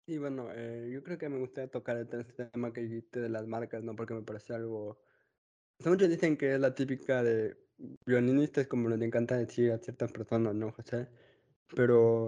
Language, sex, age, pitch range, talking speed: Spanish, male, 20-39, 115-125 Hz, 200 wpm